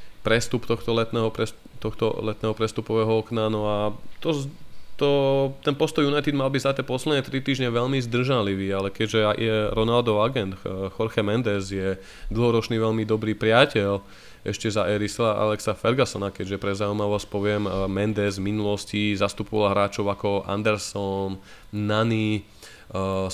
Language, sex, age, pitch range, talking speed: Slovak, male, 20-39, 100-115 Hz, 135 wpm